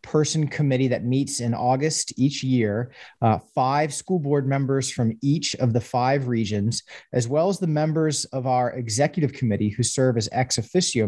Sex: male